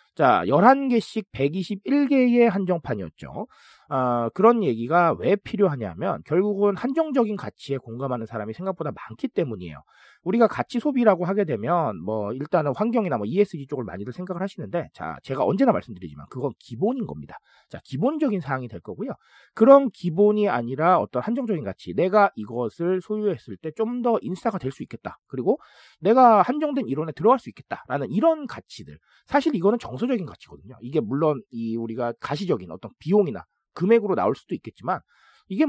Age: 40-59